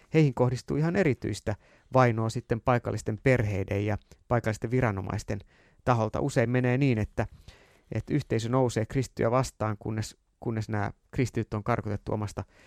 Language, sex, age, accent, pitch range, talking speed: Finnish, male, 30-49, native, 110-130 Hz, 135 wpm